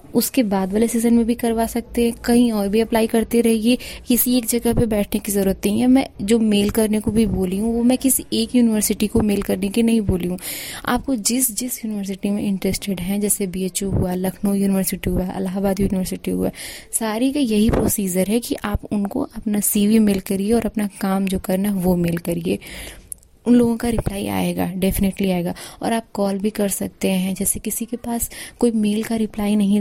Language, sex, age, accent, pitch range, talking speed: Hindi, female, 20-39, native, 195-230 Hz, 210 wpm